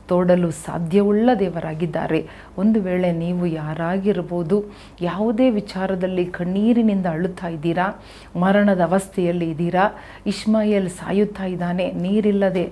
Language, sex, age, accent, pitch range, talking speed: Kannada, female, 40-59, native, 175-205 Hz, 90 wpm